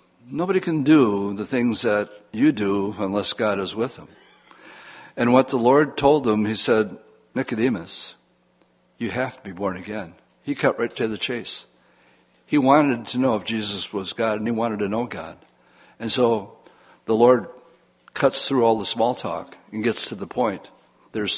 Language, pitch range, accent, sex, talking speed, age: English, 100-120 Hz, American, male, 180 wpm, 60-79